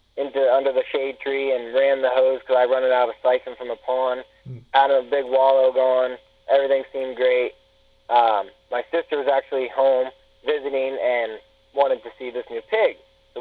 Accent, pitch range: American, 125-150 Hz